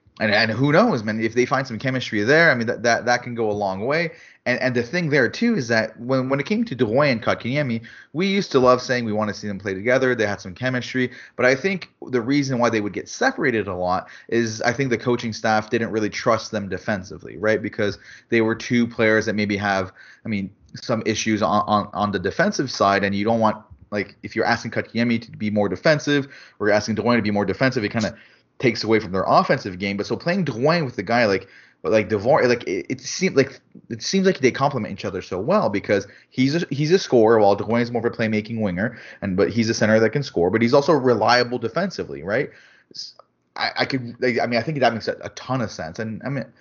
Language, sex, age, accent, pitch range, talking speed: English, male, 30-49, Canadian, 105-130 Hz, 245 wpm